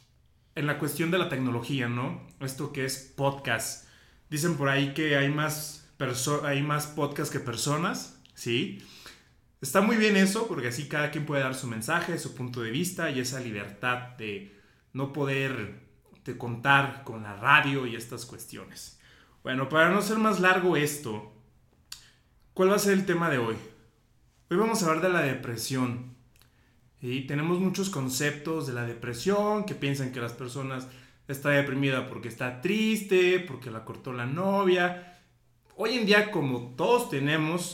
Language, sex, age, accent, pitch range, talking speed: Spanish, male, 30-49, Mexican, 125-160 Hz, 165 wpm